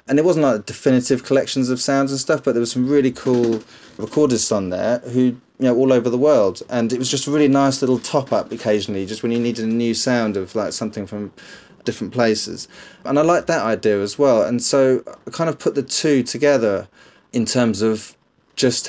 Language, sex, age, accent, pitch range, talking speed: English, male, 20-39, British, 105-125 Hz, 220 wpm